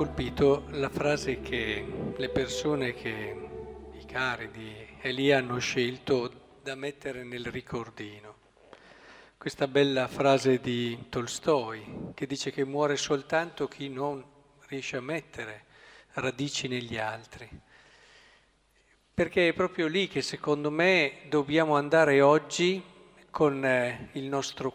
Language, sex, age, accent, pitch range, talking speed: Italian, male, 50-69, native, 135-185 Hz, 115 wpm